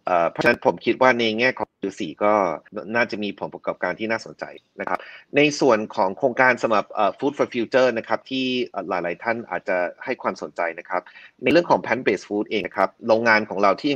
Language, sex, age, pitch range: Thai, male, 30-49, 95-120 Hz